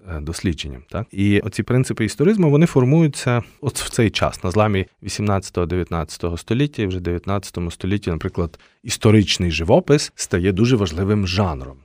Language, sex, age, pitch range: Ukrainian, male, 30-49, 85-110 Hz